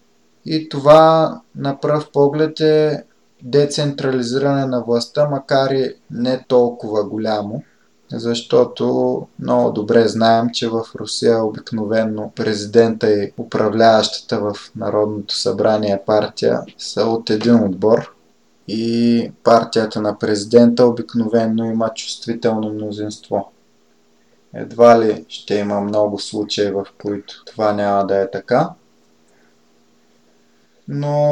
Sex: male